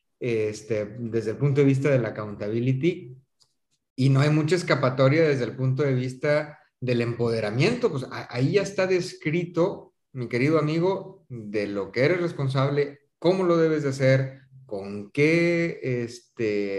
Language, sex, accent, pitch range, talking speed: Spanish, male, Mexican, 120-155 Hz, 155 wpm